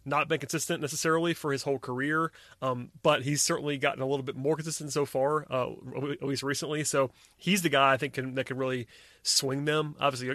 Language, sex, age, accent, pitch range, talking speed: English, male, 30-49, American, 130-160 Hz, 220 wpm